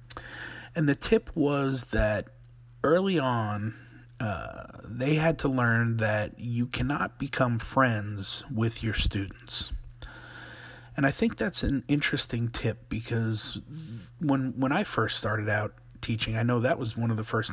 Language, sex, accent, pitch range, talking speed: English, male, American, 110-125 Hz, 145 wpm